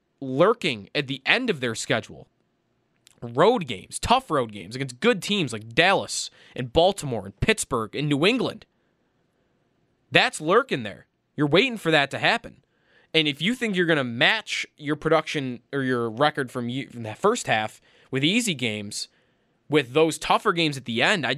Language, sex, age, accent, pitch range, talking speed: English, male, 20-39, American, 125-170 Hz, 175 wpm